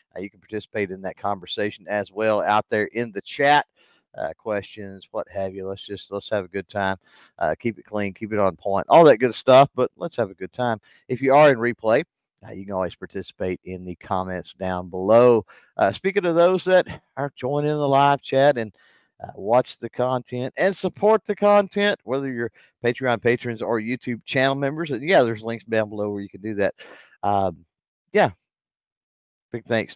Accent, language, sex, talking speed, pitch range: American, English, male, 200 wpm, 95-125 Hz